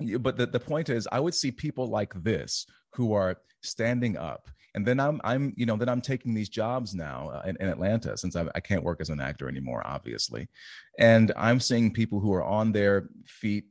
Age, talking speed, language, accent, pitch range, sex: 30-49, 215 wpm, English, American, 90-120 Hz, male